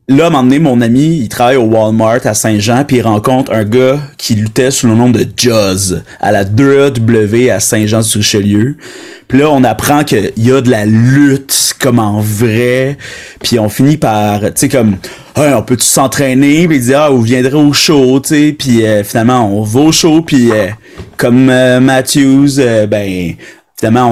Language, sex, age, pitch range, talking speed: French, male, 30-49, 115-135 Hz, 205 wpm